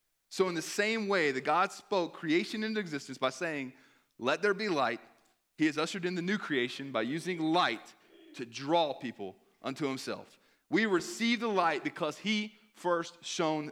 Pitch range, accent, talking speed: 130-170 Hz, American, 175 wpm